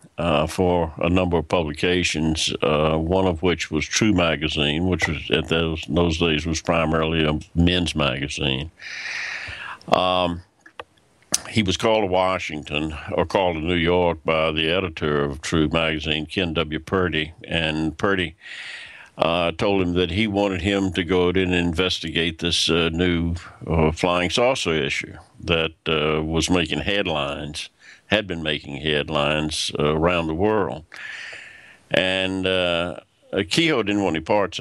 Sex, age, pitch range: male, 60-79, 80-90 Hz